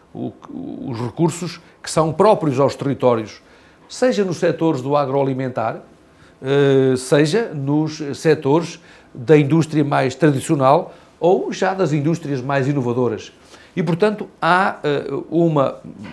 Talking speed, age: 110 wpm, 50-69